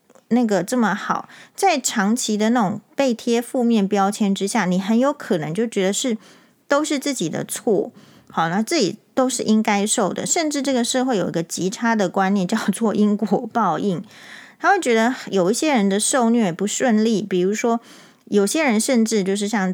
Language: Chinese